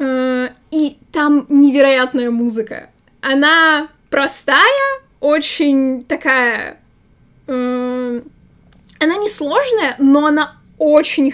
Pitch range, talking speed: 240-290 Hz, 75 wpm